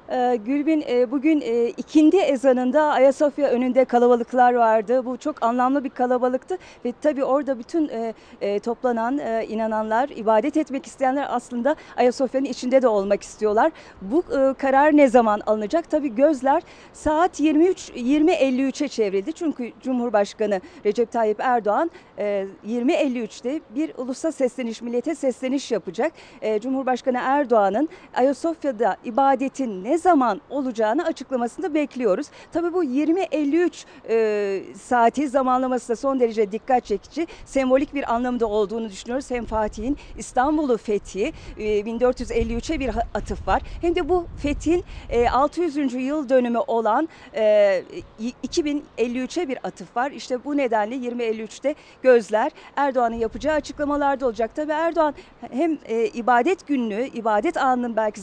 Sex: female